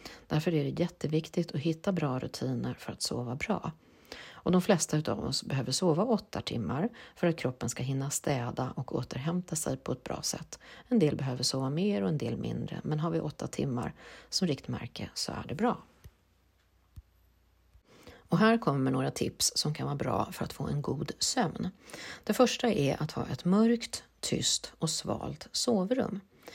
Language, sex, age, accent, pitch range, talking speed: Swedish, female, 40-59, native, 140-185 Hz, 175 wpm